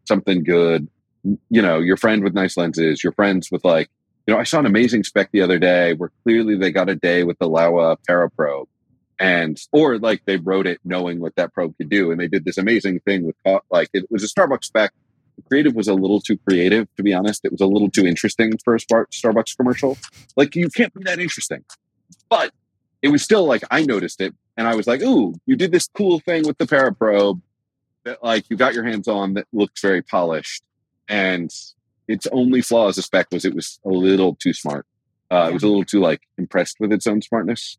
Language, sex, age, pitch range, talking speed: English, male, 30-49, 95-135 Hz, 230 wpm